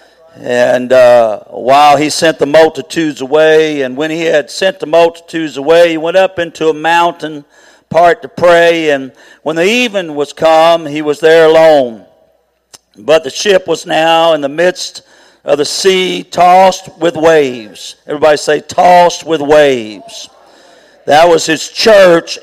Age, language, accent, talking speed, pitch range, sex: 50-69, English, American, 155 wpm, 160-220 Hz, male